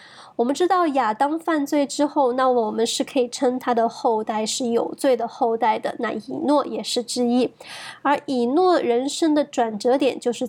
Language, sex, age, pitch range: Chinese, female, 20-39, 240-290 Hz